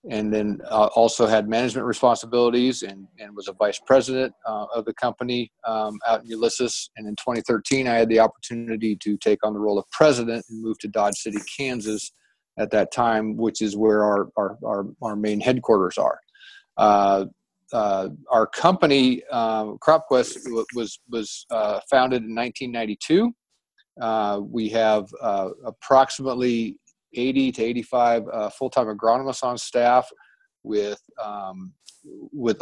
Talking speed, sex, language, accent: 145 wpm, male, English, American